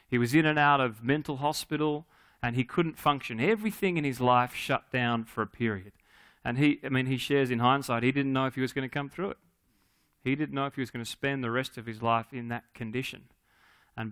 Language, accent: English, Australian